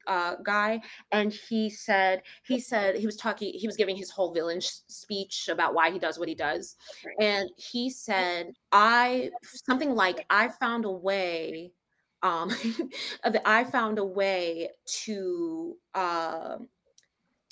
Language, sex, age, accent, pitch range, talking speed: English, female, 20-39, American, 185-240 Hz, 140 wpm